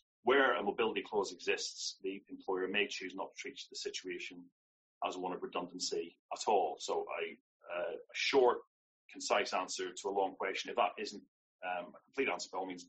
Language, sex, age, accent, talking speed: English, male, 40-59, British, 185 wpm